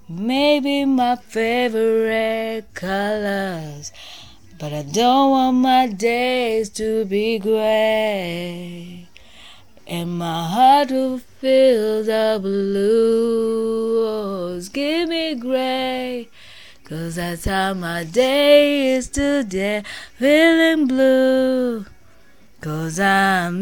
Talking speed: 85 wpm